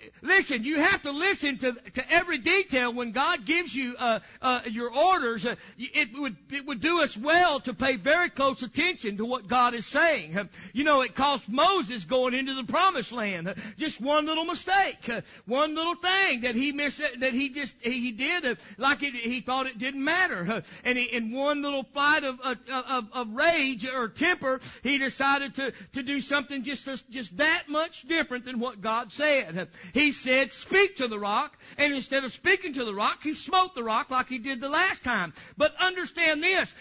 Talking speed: 210 wpm